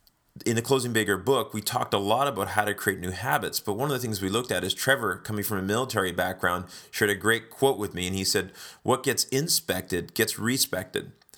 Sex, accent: male, American